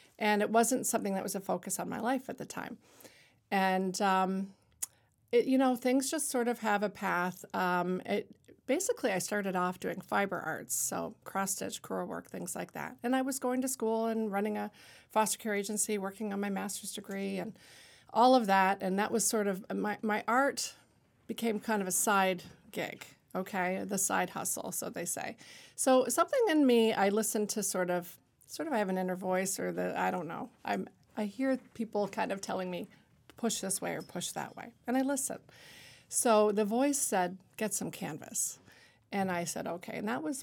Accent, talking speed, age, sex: American, 205 wpm, 40-59, female